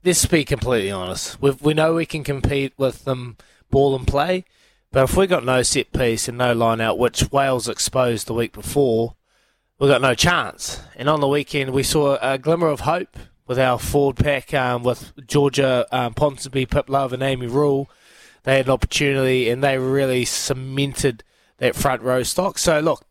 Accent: Australian